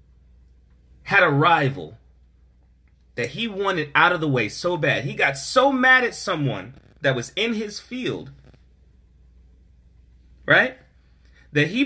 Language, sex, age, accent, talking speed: English, male, 30-49, American, 130 wpm